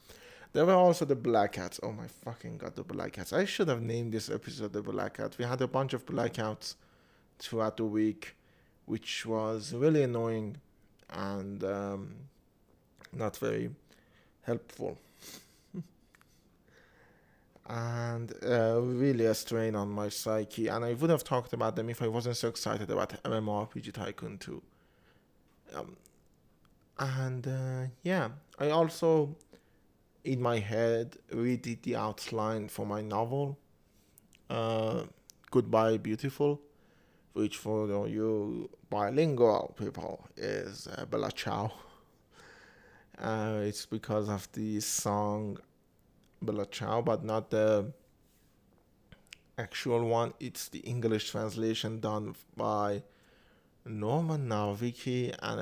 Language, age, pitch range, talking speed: English, 30-49, 105-125 Hz, 120 wpm